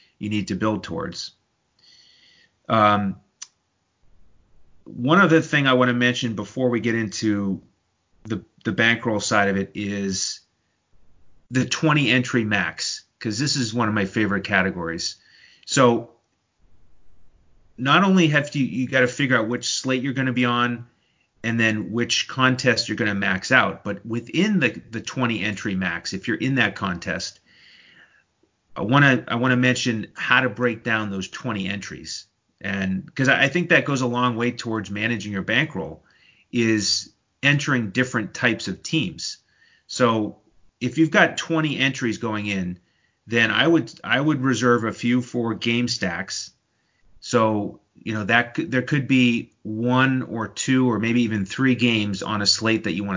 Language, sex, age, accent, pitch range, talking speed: English, male, 30-49, American, 105-130 Hz, 165 wpm